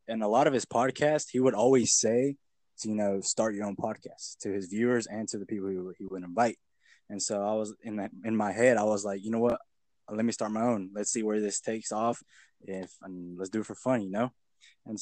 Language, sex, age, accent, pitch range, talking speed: English, male, 20-39, American, 100-115 Hz, 255 wpm